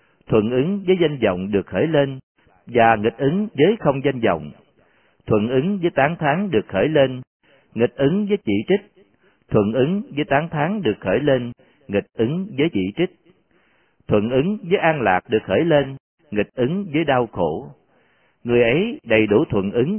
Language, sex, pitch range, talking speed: Vietnamese, male, 100-155 Hz, 180 wpm